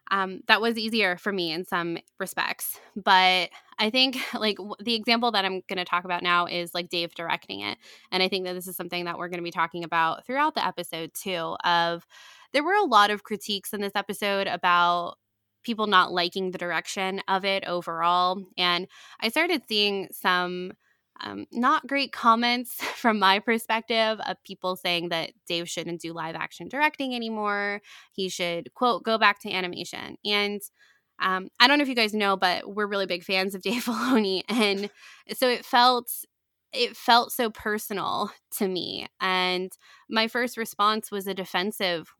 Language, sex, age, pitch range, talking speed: English, female, 20-39, 180-225 Hz, 180 wpm